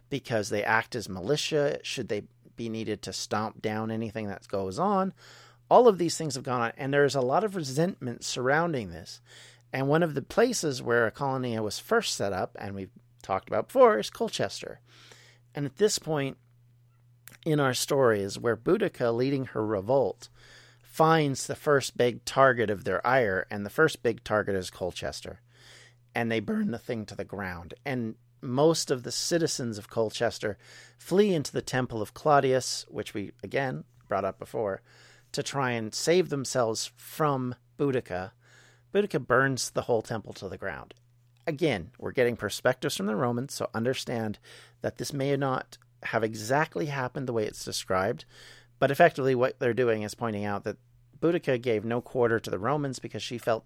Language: English